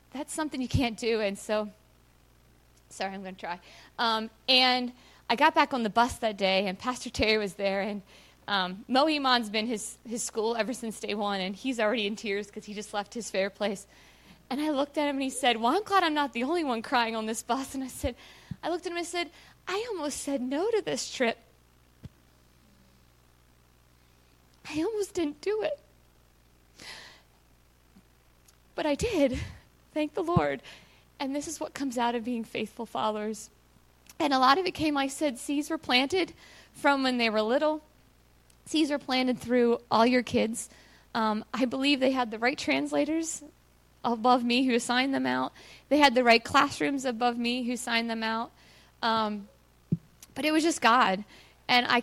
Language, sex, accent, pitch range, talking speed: English, female, American, 205-275 Hz, 190 wpm